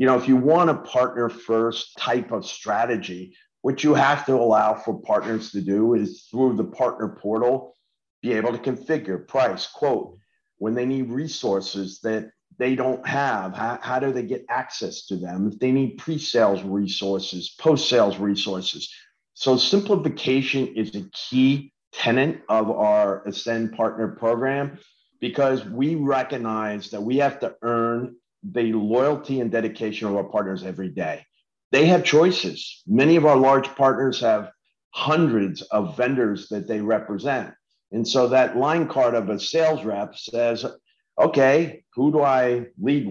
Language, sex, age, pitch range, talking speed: English, male, 50-69, 110-145 Hz, 155 wpm